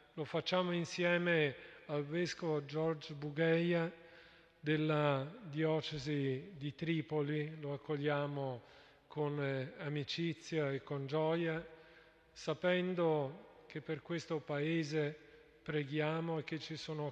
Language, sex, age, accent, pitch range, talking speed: Italian, male, 40-59, native, 150-170 Hz, 100 wpm